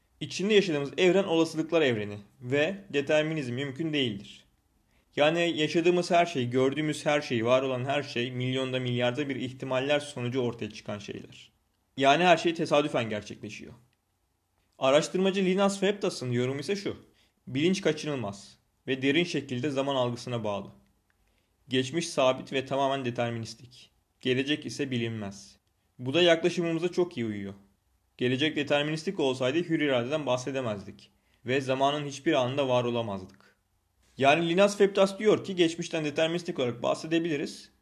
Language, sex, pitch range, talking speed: Turkish, male, 115-155 Hz, 130 wpm